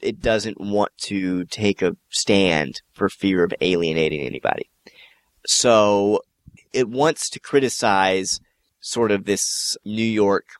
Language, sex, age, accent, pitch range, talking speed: English, male, 30-49, American, 95-115 Hz, 125 wpm